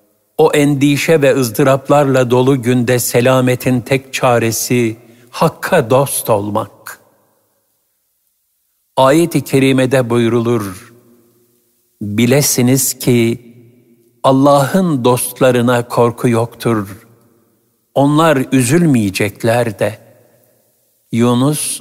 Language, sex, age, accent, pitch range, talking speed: Turkish, male, 60-79, native, 115-135 Hz, 70 wpm